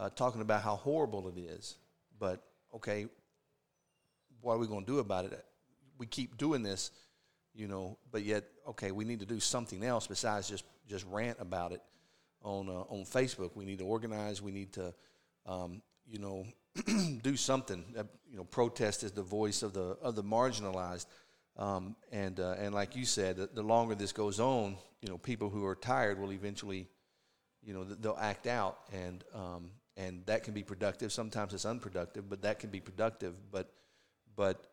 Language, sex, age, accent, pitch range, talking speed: English, male, 40-59, American, 95-115 Hz, 185 wpm